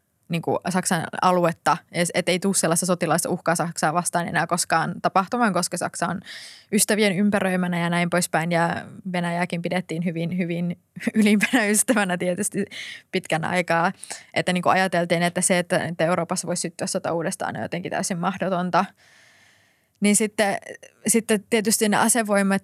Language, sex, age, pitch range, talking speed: Finnish, female, 20-39, 175-195 Hz, 140 wpm